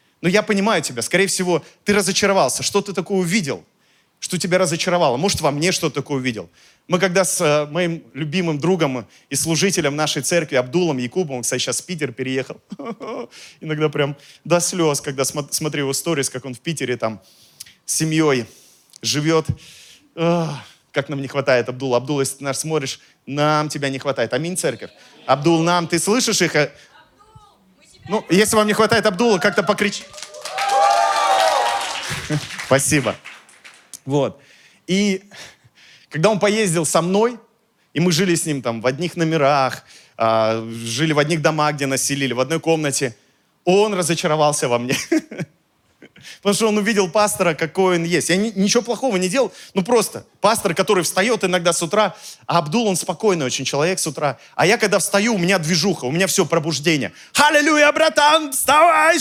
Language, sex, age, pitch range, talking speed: Russian, male, 30-49, 145-200 Hz, 160 wpm